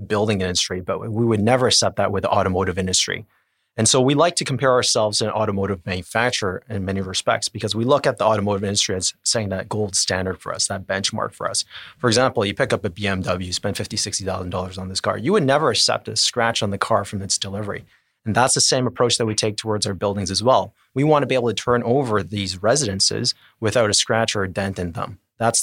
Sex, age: male, 30-49